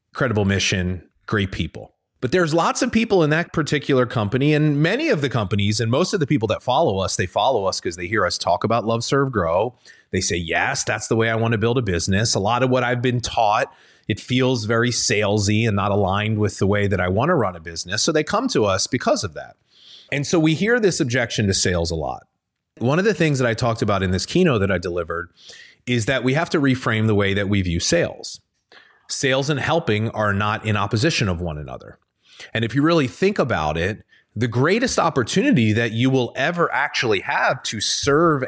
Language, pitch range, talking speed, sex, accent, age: English, 105-145 Hz, 230 wpm, male, American, 30-49